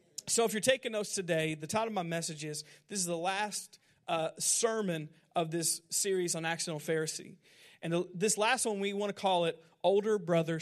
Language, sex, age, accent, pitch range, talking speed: English, male, 40-59, American, 170-215 Hz, 200 wpm